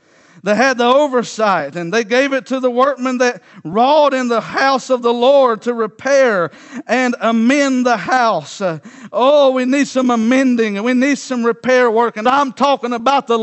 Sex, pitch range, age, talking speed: male, 215-265 Hz, 50-69, 185 wpm